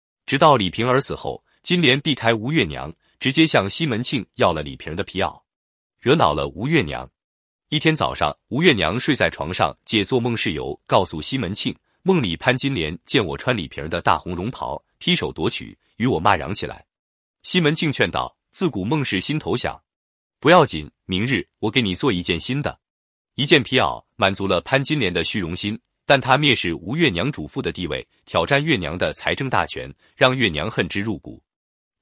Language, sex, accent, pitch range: Chinese, male, native, 90-150 Hz